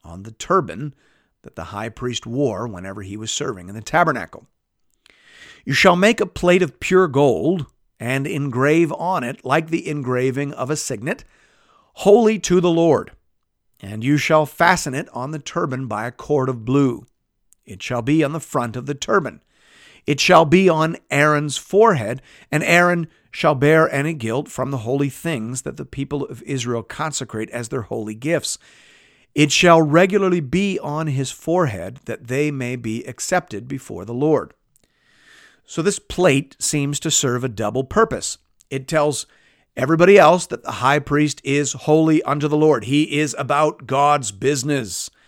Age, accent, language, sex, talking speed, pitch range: 50-69, American, English, male, 170 wpm, 120-155 Hz